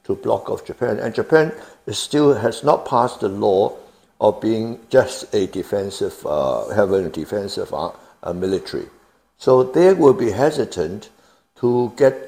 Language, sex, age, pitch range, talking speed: English, male, 60-79, 130-205 Hz, 155 wpm